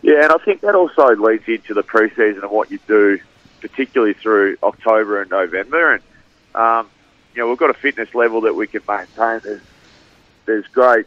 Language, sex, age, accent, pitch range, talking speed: English, male, 30-49, Australian, 100-155 Hz, 190 wpm